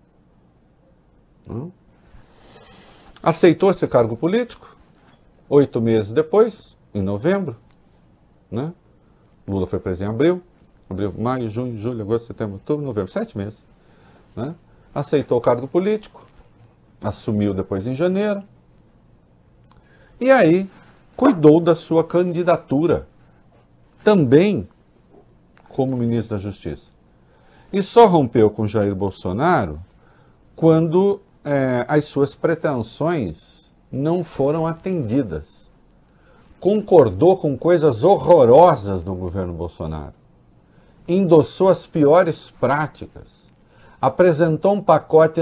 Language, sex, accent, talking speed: Portuguese, male, Brazilian, 95 wpm